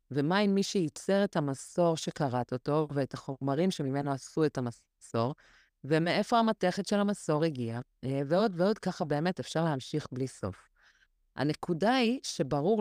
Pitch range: 140-185 Hz